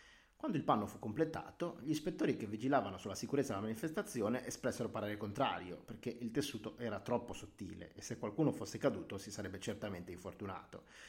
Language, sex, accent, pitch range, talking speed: Italian, male, native, 100-125 Hz, 170 wpm